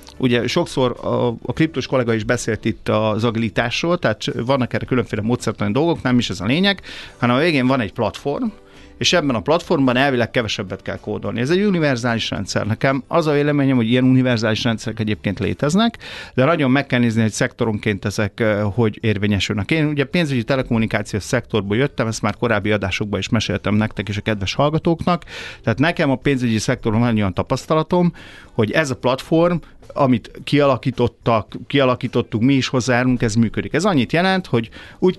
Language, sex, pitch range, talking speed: Hungarian, male, 110-140 Hz, 175 wpm